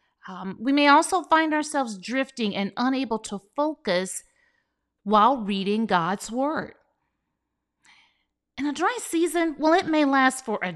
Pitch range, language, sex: 200-300 Hz, English, female